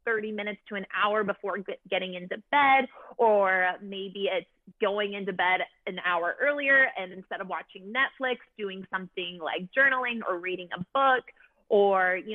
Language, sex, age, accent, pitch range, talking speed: English, female, 20-39, American, 190-245 Hz, 160 wpm